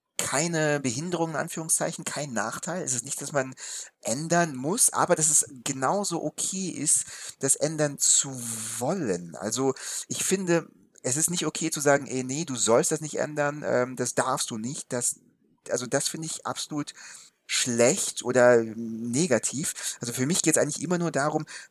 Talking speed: 170 wpm